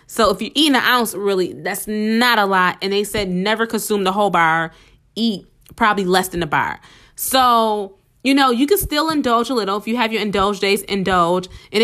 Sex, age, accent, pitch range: female, 20-39, American, 175-220 Hz